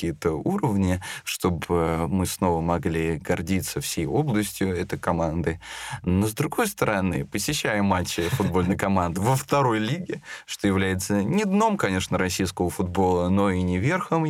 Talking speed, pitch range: 140 wpm, 90-120 Hz